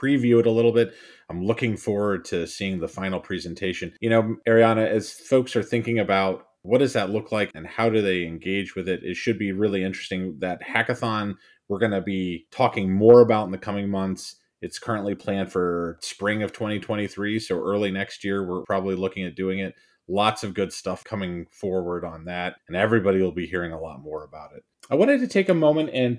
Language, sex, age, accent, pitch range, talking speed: English, male, 30-49, American, 95-120 Hz, 215 wpm